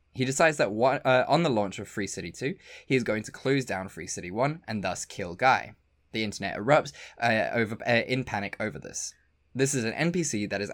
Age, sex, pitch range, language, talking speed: 20-39, male, 100-140 Hz, English, 230 wpm